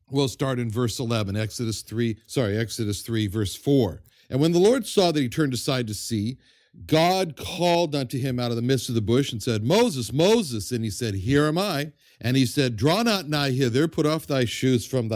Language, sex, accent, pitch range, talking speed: English, male, American, 115-160 Hz, 220 wpm